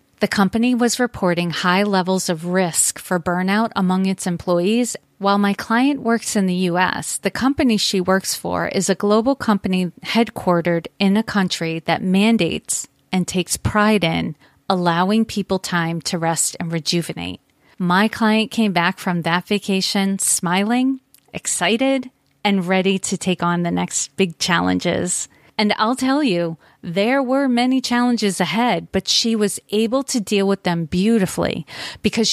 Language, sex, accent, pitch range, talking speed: English, female, American, 180-220 Hz, 155 wpm